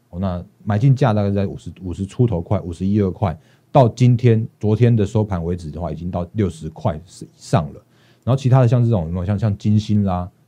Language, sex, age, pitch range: Chinese, male, 30-49, 90-115 Hz